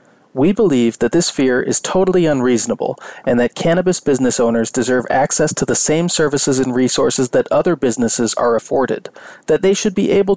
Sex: male